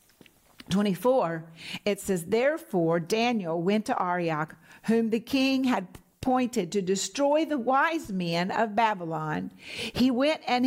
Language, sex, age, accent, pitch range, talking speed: English, female, 50-69, American, 200-260 Hz, 130 wpm